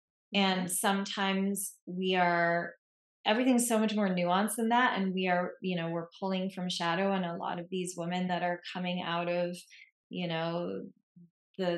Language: English